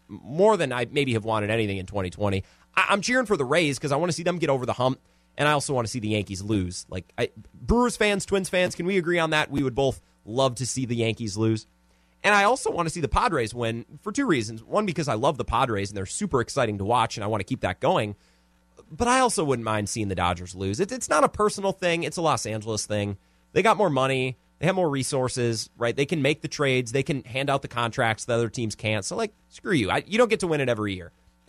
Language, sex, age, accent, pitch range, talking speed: English, male, 30-49, American, 105-155 Hz, 265 wpm